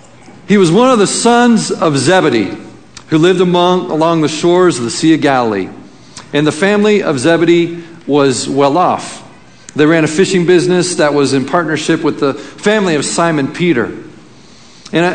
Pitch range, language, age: 135-175 Hz, English, 50-69